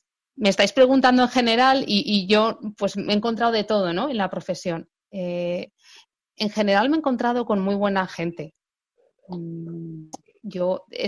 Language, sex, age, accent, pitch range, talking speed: Spanish, female, 30-49, Spanish, 180-235 Hz, 160 wpm